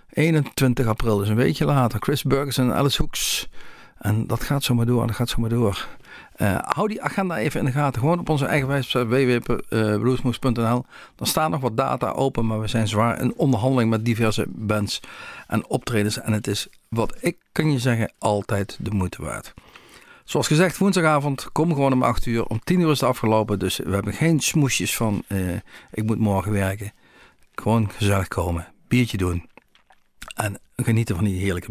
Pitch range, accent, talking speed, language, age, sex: 105-140 Hz, Dutch, 185 wpm, Dutch, 50-69, male